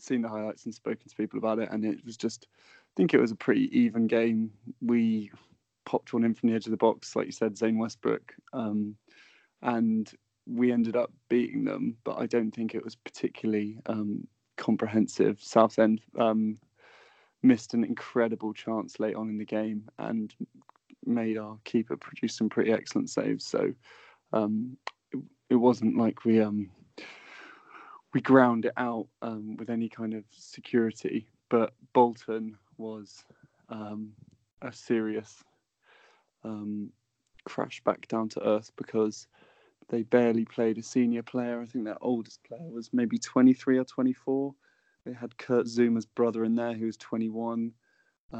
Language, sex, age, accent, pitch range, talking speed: English, male, 20-39, British, 110-120 Hz, 160 wpm